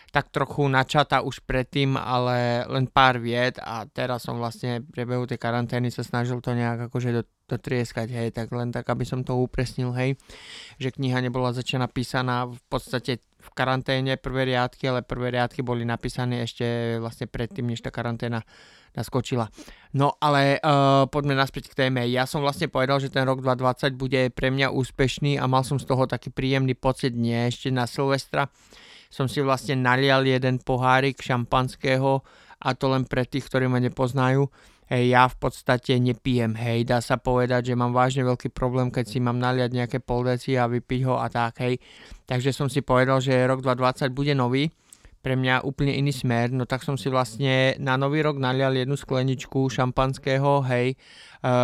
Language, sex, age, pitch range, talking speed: Slovak, male, 20-39, 125-135 Hz, 180 wpm